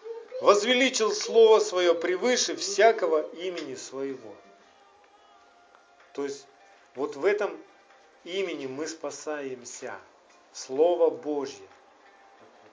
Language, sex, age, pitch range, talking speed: Russian, male, 50-69, 150-215 Hz, 80 wpm